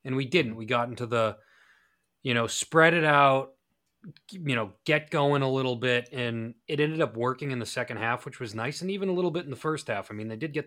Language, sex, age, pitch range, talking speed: English, male, 30-49, 115-135 Hz, 255 wpm